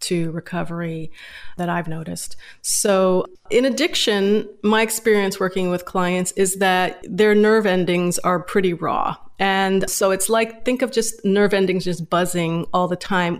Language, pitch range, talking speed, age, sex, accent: English, 175-205 Hz, 155 wpm, 30-49, female, American